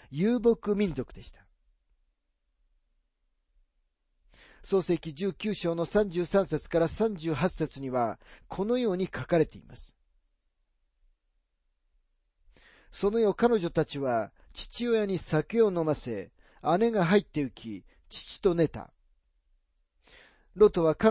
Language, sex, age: Japanese, male, 40-59